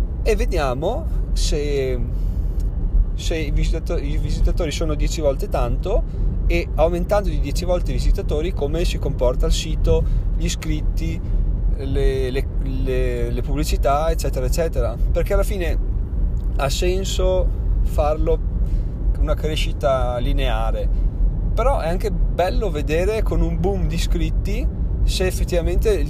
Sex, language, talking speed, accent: male, Italian, 125 wpm, native